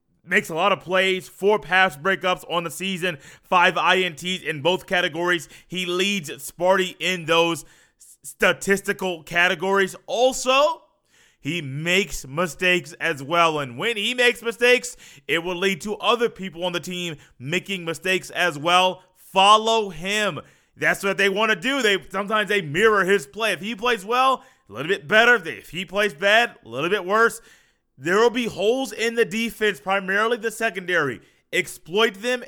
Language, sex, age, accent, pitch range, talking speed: English, male, 20-39, American, 175-220 Hz, 165 wpm